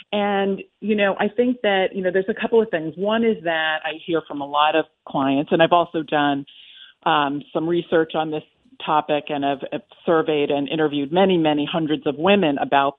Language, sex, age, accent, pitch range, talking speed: English, female, 40-59, American, 155-210 Hz, 205 wpm